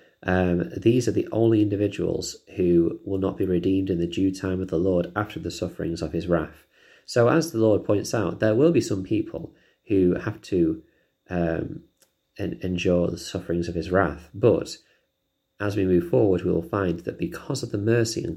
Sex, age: male, 30-49